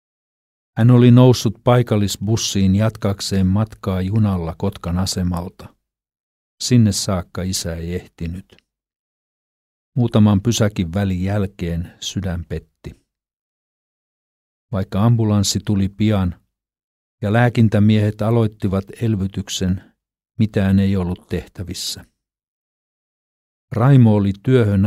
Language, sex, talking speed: Finnish, male, 85 wpm